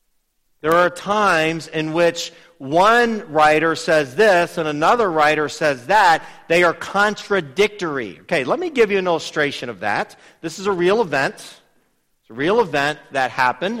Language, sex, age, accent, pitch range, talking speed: English, male, 40-59, American, 130-170 Hz, 160 wpm